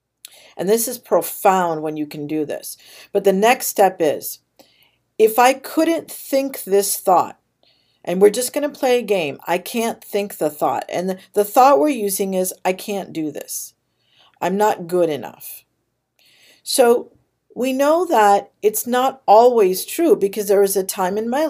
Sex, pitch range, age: female, 180-230 Hz, 50-69